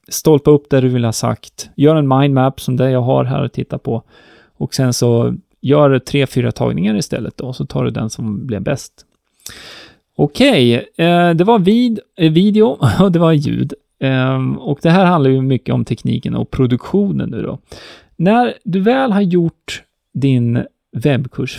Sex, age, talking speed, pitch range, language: male, 30-49, 175 wpm, 125-175 Hz, Swedish